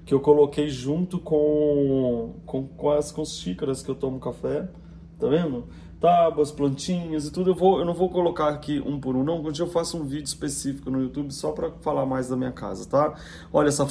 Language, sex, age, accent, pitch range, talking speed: Portuguese, male, 20-39, Brazilian, 130-155 Hz, 205 wpm